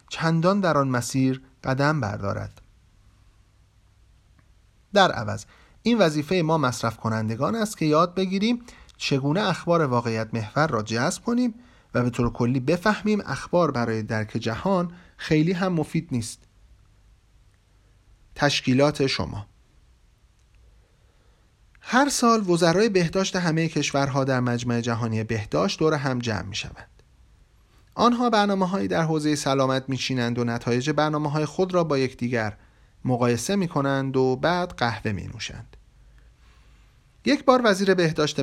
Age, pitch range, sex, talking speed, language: 40-59, 115-170 Hz, male, 125 wpm, Persian